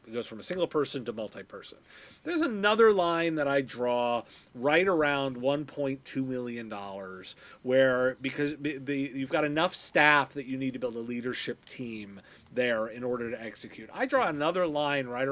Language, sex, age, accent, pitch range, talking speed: English, male, 30-49, American, 120-160 Hz, 175 wpm